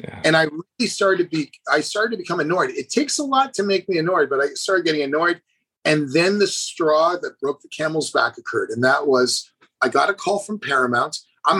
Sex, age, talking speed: male, 30-49, 230 wpm